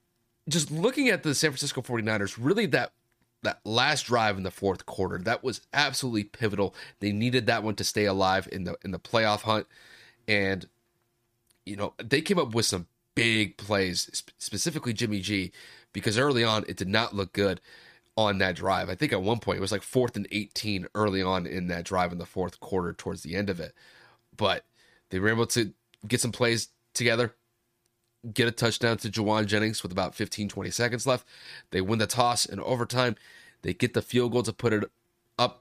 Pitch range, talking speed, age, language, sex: 100-125 Hz, 200 wpm, 30-49, English, male